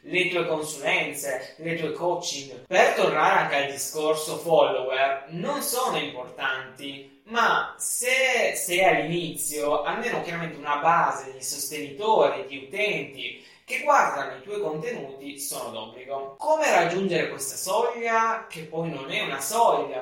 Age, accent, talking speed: 20-39, native, 130 wpm